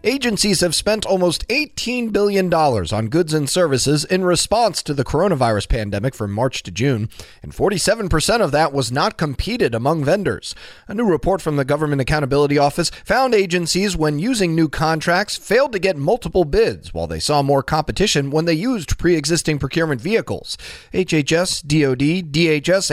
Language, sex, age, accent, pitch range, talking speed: English, male, 30-49, American, 135-185 Hz, 160 wpm